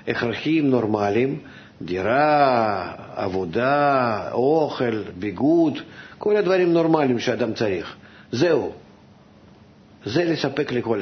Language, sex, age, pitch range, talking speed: Hebrew, male, 50-69, 110-150 Hz, 80 wpm